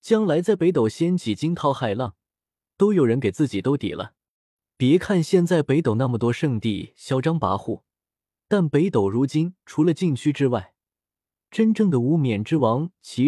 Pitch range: 110-165 Hz